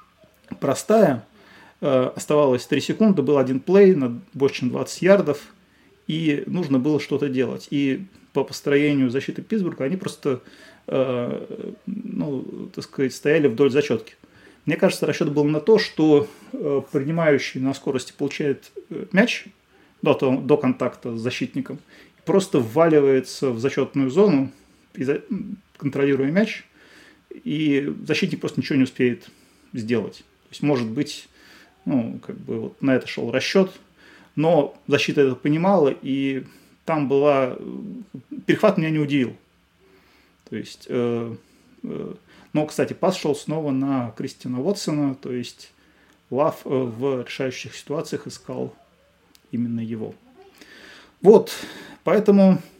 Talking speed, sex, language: 120 wpm, male, Russian